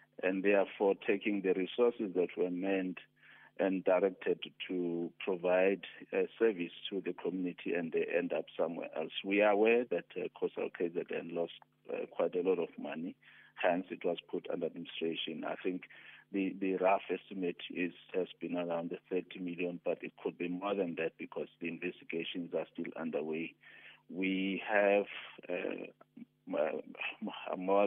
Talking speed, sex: 155 wpm, male